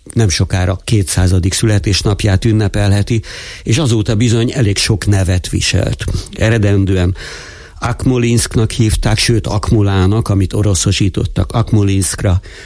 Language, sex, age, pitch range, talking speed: Hungarian, male, 60-79, 95-110 Hz, 95 wpm